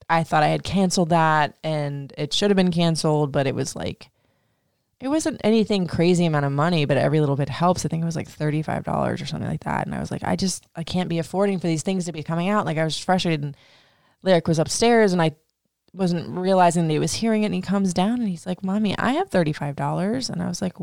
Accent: American